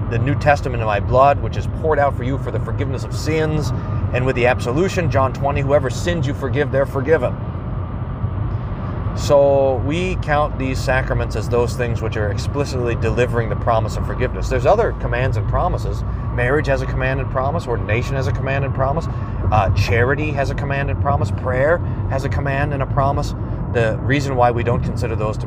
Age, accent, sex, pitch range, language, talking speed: 30-49, American, male, 105-130 Hz, English, 200 wpm